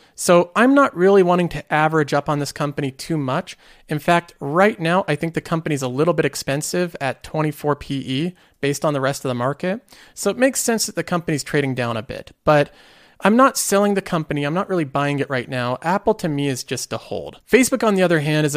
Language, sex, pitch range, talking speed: English, male, 145-185 Hz, 235 wpm